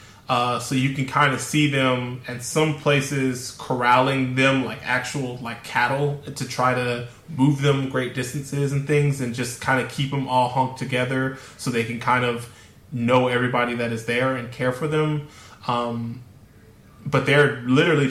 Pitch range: 115-135 Hz